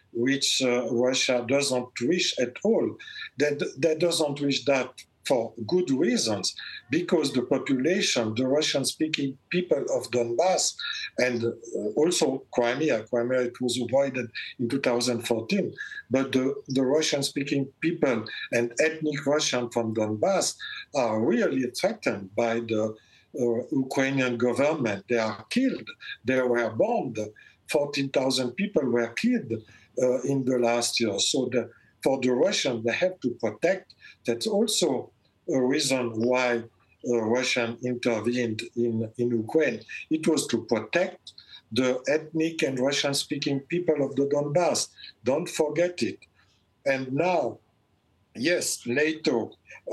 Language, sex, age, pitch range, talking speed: English, male, 50-69, 120-140 Hz, 125 wpm